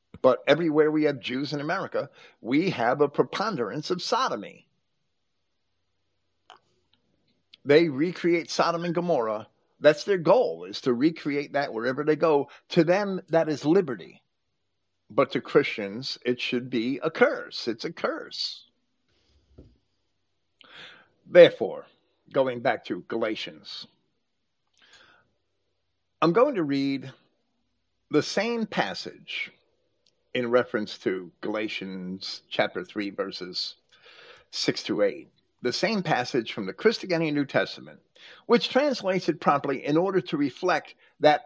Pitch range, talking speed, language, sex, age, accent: 120-180 Hz, 120 wpm, English, male, 50-69, American